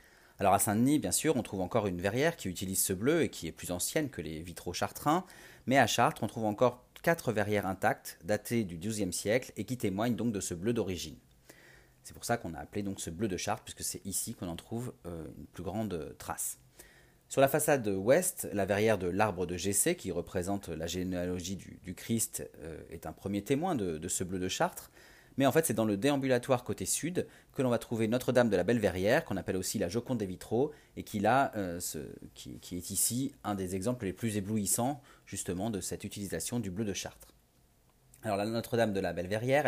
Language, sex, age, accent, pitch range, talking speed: French, male, 30-49, French, 90-115 Hz, 215 wpm